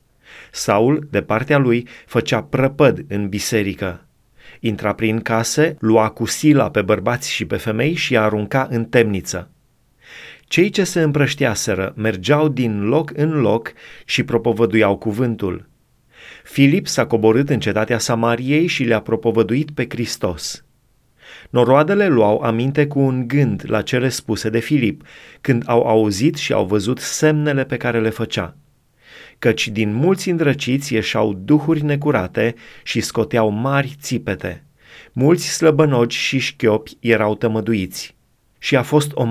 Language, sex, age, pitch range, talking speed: Romanian, male, 30-49, 110-145 Hz, 135 wpm